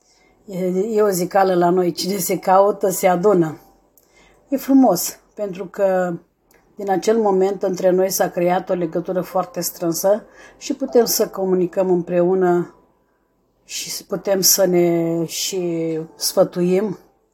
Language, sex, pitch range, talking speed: Romanian, female, 175-200 Hz, 125 wpm